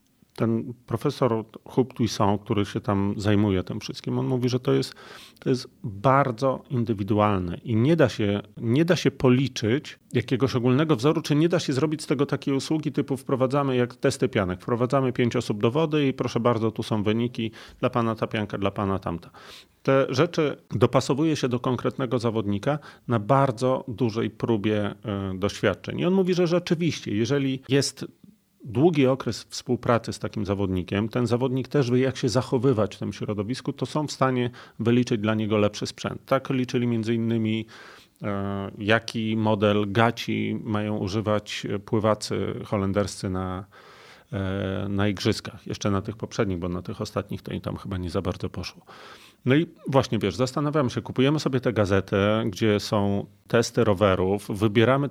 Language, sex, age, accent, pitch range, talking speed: Polish, male, 40-59, native, 105-130 Hz, 160 wpm